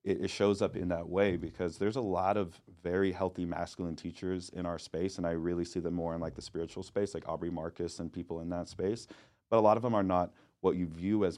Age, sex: 30-49, male